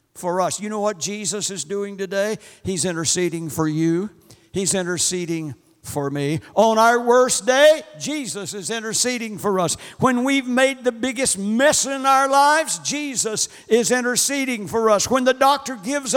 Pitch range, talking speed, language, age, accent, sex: 200-260 Hz, 165 wpm, English, 60-79, American, male